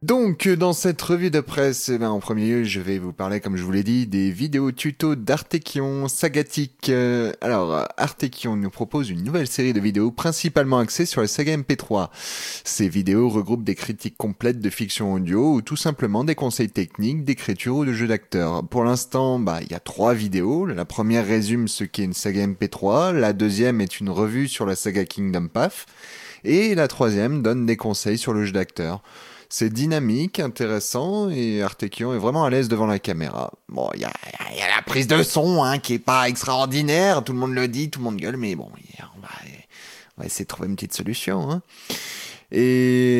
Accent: French